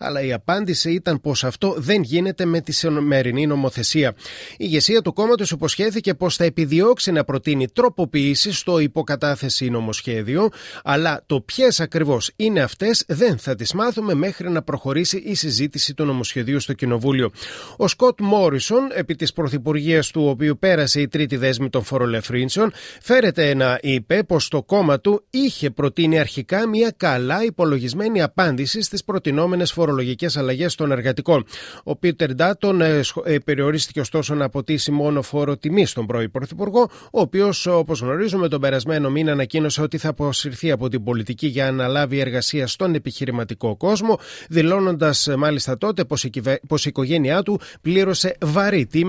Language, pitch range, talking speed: Greek, 135-185 Hz, 150 wpm